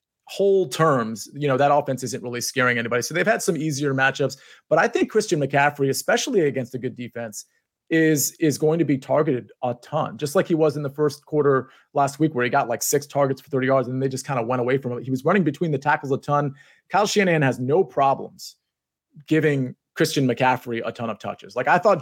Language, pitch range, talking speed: English, 130-155 Hz, 230 wpm